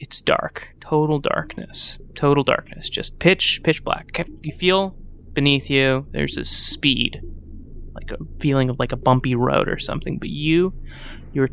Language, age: English, 20-39